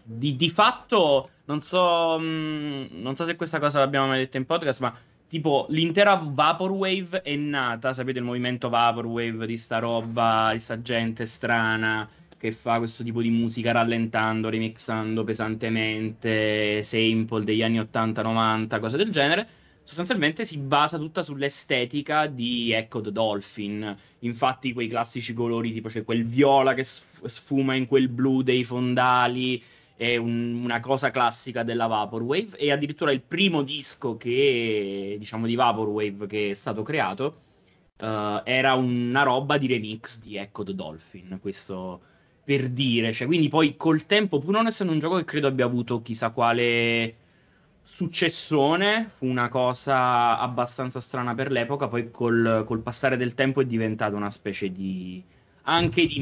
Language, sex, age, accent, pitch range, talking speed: Italian, male, 20-39, native, 110-140 Hz, 155 wpm